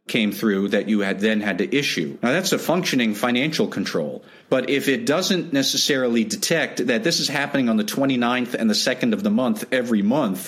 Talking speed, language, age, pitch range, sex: 205 wpm, English, 40-59, 110-180 Hz, male